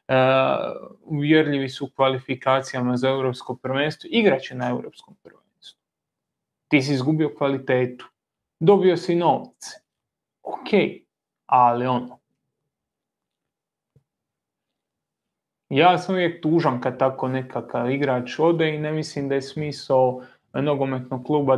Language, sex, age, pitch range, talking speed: Croatian, male, 20-39, 125-150 Hz, 110 wpm